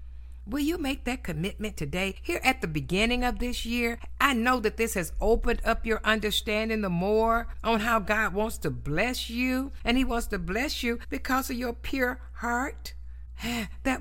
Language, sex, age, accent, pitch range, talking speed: English, female, 60-79, American, 145-235 Hz, 185 wpm